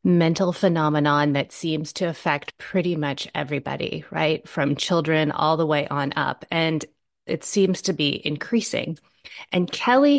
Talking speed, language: 145 wpm, English